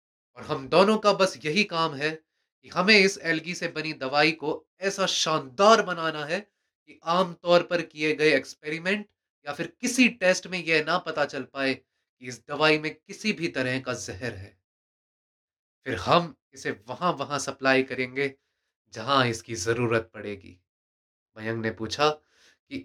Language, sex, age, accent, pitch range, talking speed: Hindi, male, 30-49, native, 110-155 Hz, 165 wpm